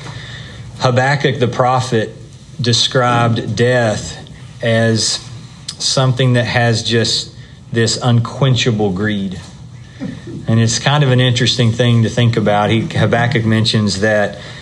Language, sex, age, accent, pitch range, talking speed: English, male, 40-59, American, 115-135 Hz, 105 wpm